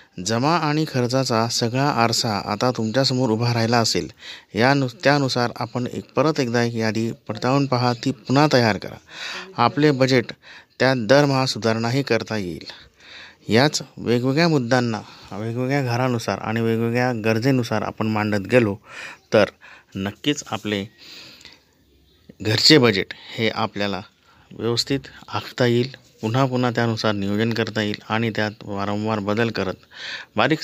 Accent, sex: native, male